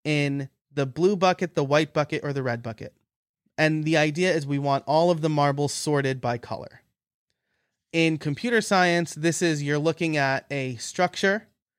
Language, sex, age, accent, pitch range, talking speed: English, male, 30-49, American, 140-190 Hz, 175 wpm